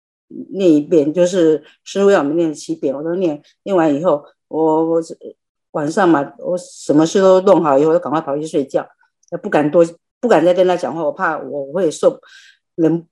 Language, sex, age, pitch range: Chinese, female, 50-69, 165-230 Hz